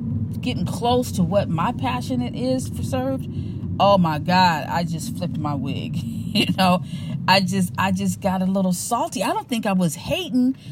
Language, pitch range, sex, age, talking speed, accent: English, 160-200 Hz, female, 40-59, 185 wpm, American